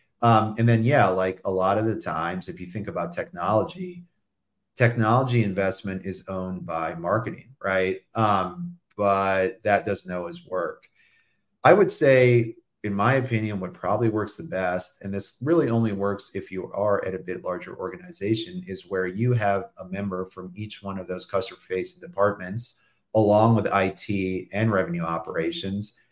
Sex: male